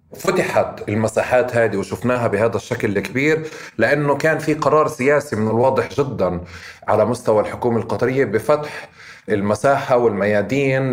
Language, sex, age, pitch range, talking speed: Arabic, male, 30-49, 110-135 Hz, 120 wpm